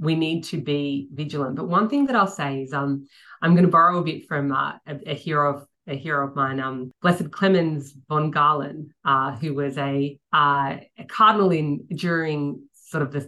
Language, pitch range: English, 140-185 Hz